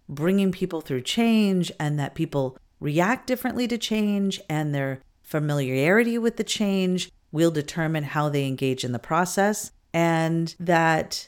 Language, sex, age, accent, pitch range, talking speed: English, female, 40-59, American, 150-190 Hz, 145 wpm